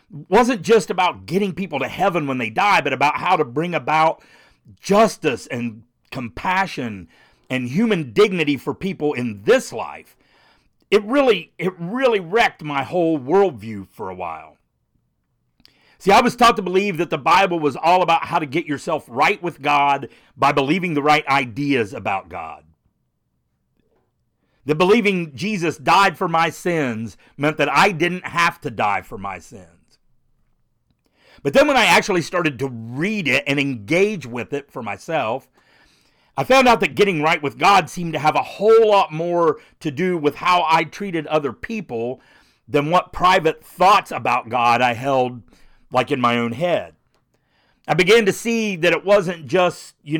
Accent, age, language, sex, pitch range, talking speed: American, 50-69, English, male, 140-185 Hz, 170 wpm